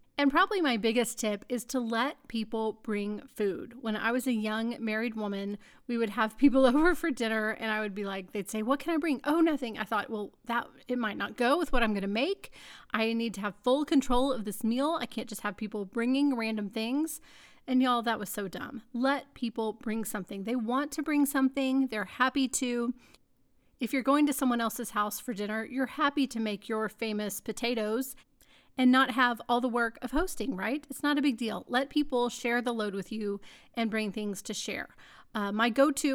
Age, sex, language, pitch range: 30-49, female, English, 215-265 Hz